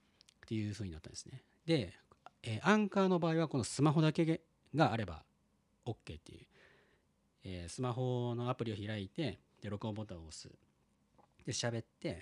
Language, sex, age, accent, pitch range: Japanese, male, 40-59, native, 100-145 Hz